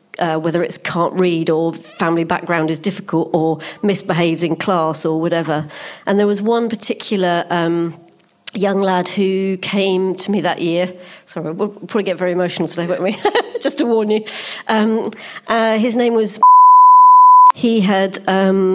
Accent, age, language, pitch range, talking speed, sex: British, 40-59, English, 175-215 Hz, 165 wpm, female